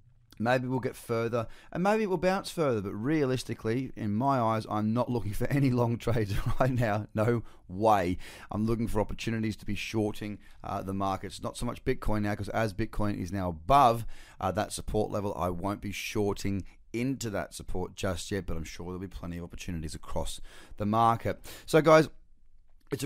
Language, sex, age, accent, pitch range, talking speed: English, male, 30-49, Australian, 95-115 Hz, 195 wpm